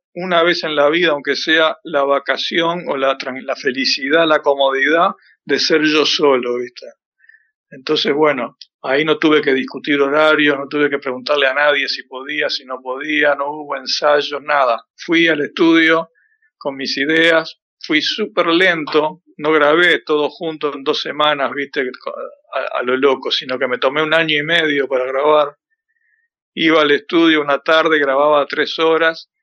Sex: male